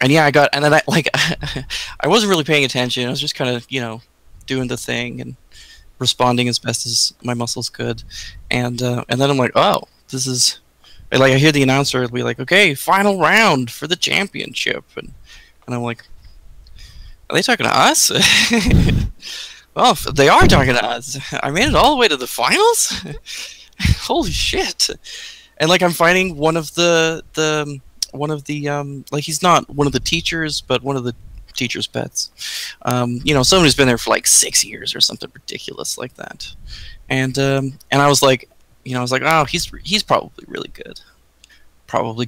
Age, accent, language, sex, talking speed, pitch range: 20-39, American, English, male, 200 wpm, 125-155 Hz